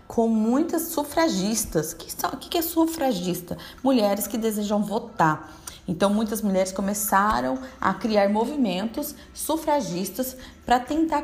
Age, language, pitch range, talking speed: 20-39, Portuguese, 195-265 Hz, 115 wpm